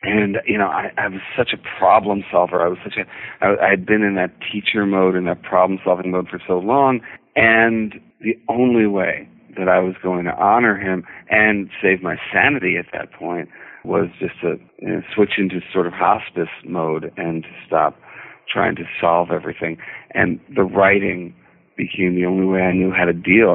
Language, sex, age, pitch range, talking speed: English, male, 40-59, 90-100 Hz, 185 wpm